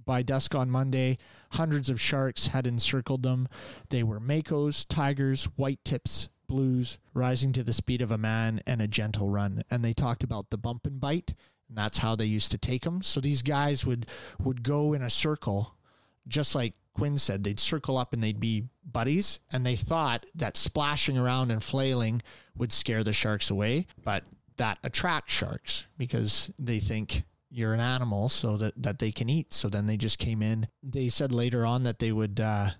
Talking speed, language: 195 wpm, English